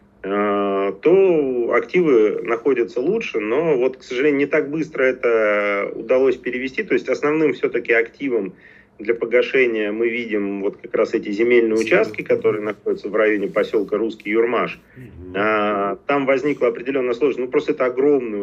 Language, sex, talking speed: Russian, male, 145 wpm